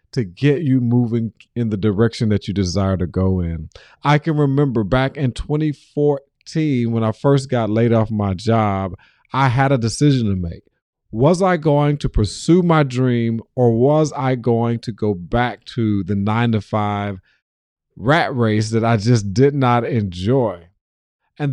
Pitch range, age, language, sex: 105-135 Hz, 40-59, English, male